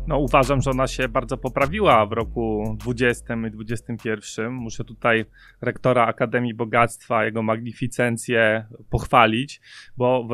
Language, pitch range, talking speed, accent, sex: Polish, 115-135 Hz, 130 wpm, native, male